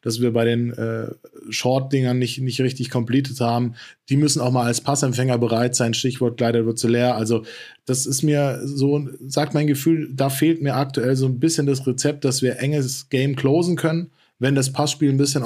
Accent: German